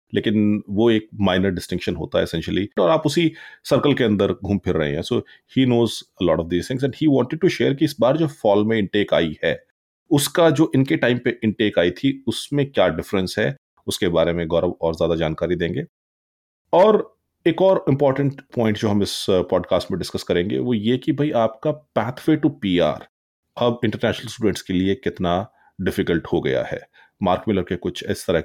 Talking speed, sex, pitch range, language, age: 205 wpm, male, 90-130 Hz, Punjabi, 30-49